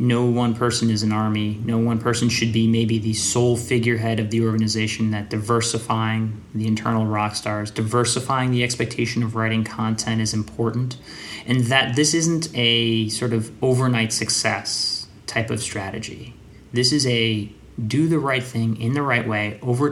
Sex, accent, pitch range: male, American, 110-125 Hz